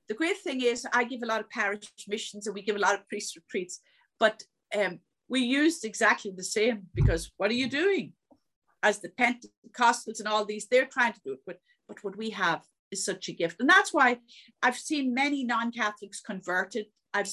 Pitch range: 190-245 Hz